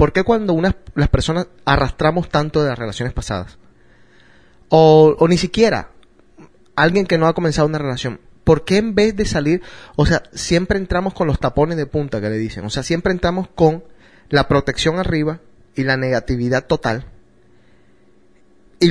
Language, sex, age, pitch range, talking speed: Spanish, male, 30-49, 130-180 Hz, 170 wpm